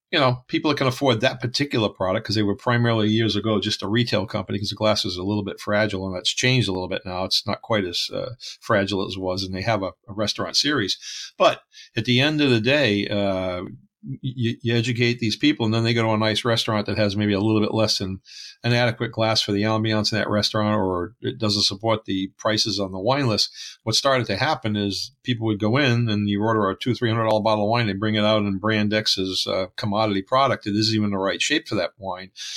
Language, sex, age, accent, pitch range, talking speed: English, male, 50-69, American, 100-120 Hz, 250 wpm